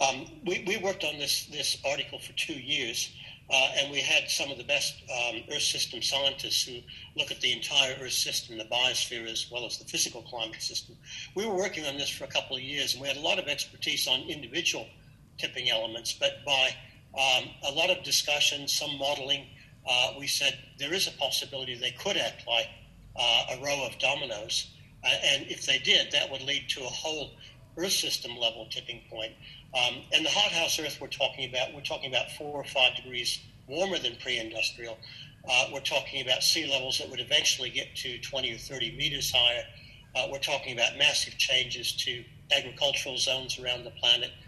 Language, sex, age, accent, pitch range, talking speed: English, male, 60-79, American, 120-140 Hz, 200 wpm